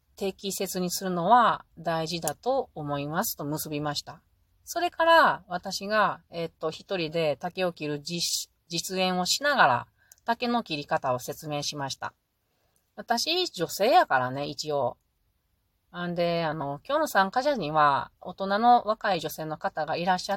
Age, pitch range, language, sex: 30-49, 150-230 Hz, Japanese, female